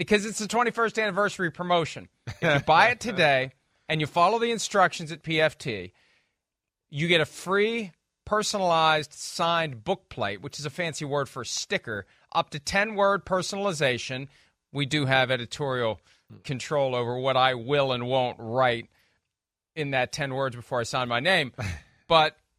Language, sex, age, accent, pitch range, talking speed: English, male, 40-59, American, 140-200 Hz, 155 wpm